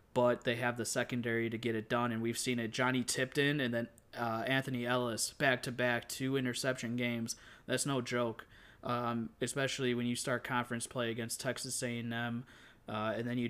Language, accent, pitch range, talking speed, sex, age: English, American, 115-130 Hz, 180 wpm, male, 20-39